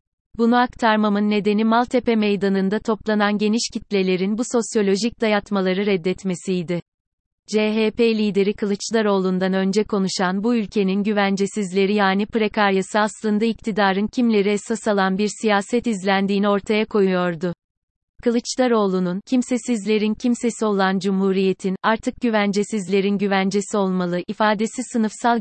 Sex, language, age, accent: female, Turkish, 30-49, native